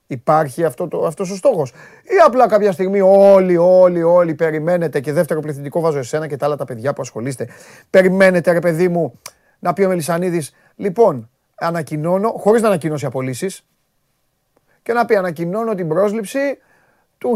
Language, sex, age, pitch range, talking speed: Greek, male, 30-49, 155-225 Hz, 165 wpm